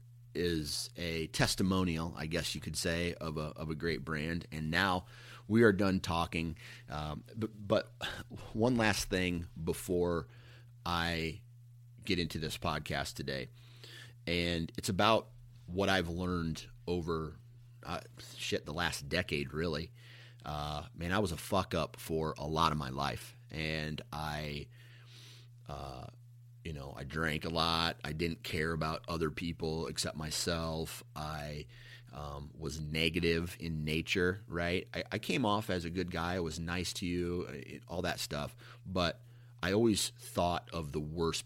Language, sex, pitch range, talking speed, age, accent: English, male, 80-115 Hz, 155 wpm, 30-49, American